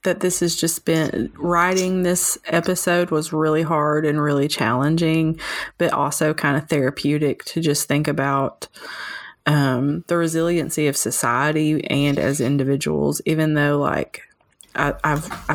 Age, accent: 20-39, American